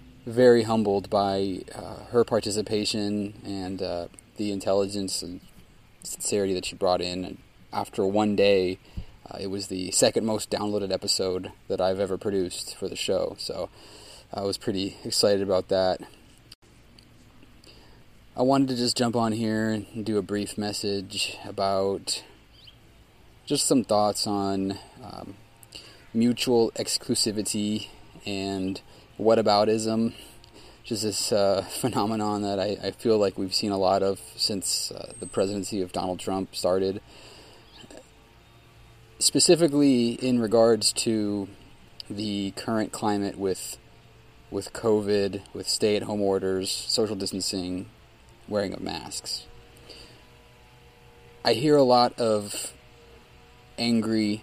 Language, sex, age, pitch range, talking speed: English, male, 20-39, 100-115 Hz, 120 wpm